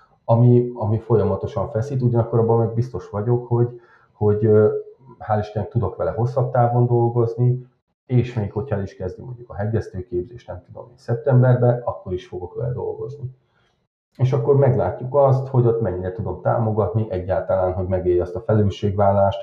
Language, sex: Hungarian, male